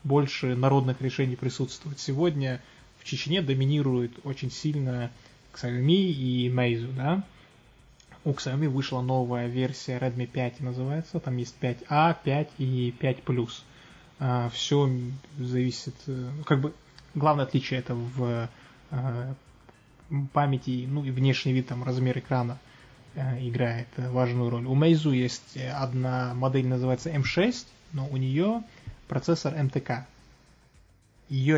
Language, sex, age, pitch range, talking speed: Russian, male, 20-39, 125-140 Hz, 115 wpm